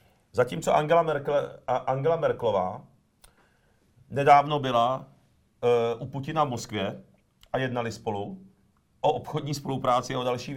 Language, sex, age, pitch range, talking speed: Czech, male, 40-59, 100-125 Hz, 120 wpm